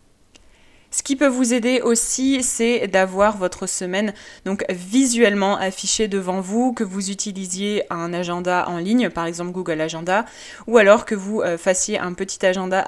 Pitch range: 185-235 Hz